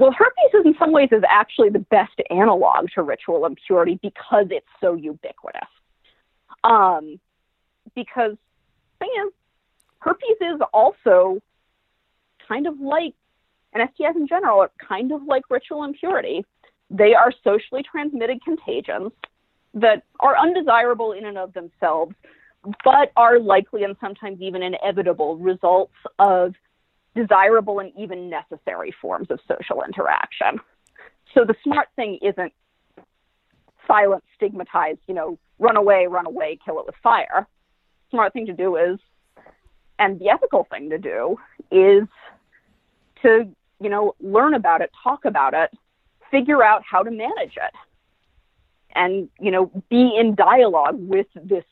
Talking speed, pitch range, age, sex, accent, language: 140 wpm, 190-300 Hz, 40-59, female, American, English